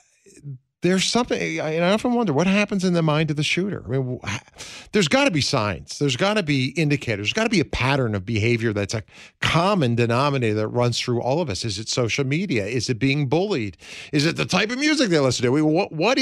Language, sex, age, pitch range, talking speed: English, male, 50-69, 105-145 Hz, 230 wpm